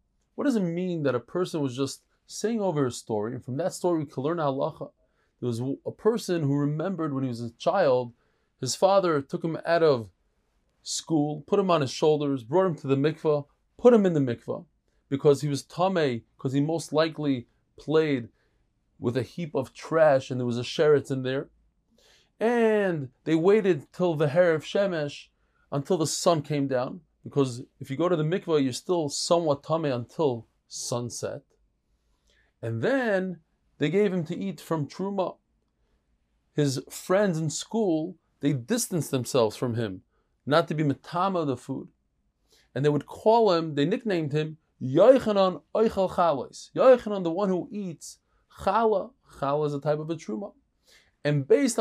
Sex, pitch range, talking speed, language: male, 135-180 Hz, 175 wpm, English